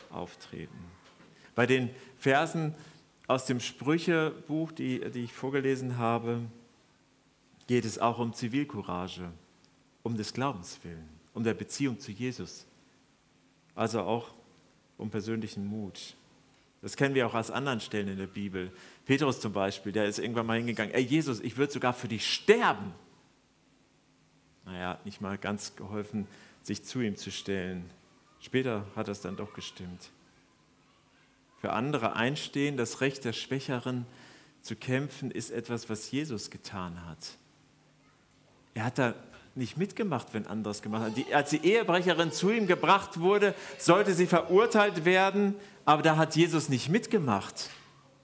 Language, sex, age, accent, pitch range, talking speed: German, male, 40-59, German, 110-160 Hz, 145 wpm